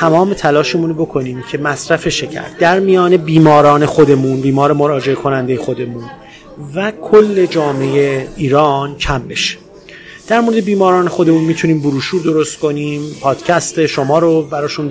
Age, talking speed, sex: 30-49, 130 wpm, male